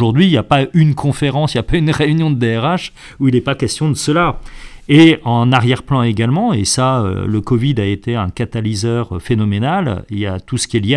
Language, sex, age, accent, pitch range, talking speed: French, male, 40-59, French, 105-140 Hz, 235 wpm